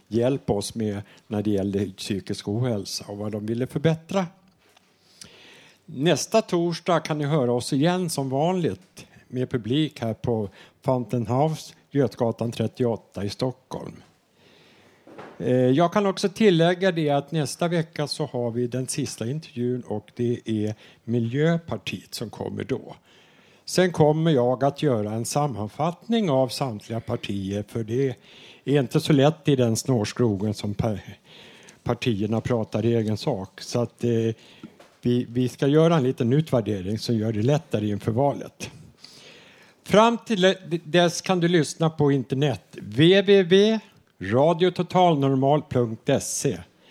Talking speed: 130 wpm